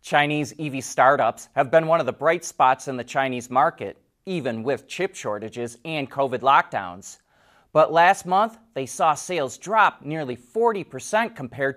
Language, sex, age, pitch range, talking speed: English, male, 30-49, 125-170 Hz, 160 wpm